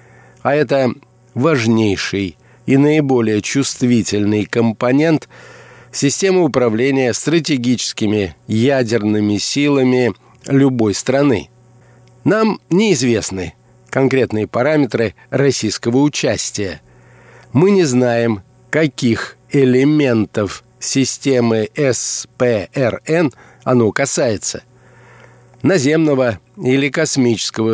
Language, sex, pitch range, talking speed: Russian, male, 110-140 Hz, 70 wpm